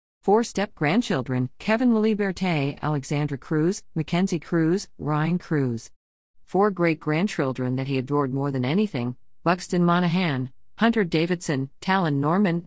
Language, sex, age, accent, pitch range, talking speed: English, female, 50-69, American, 145-190 Hz, 115 wpm